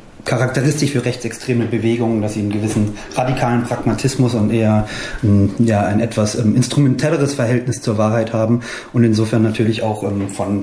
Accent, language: German, German